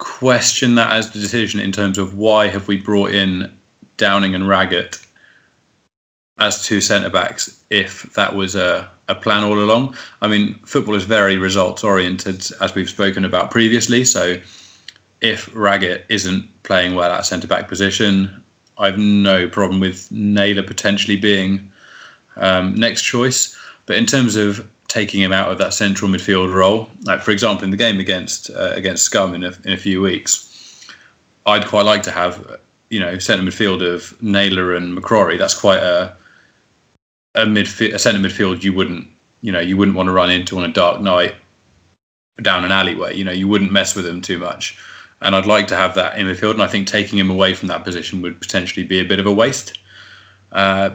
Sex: male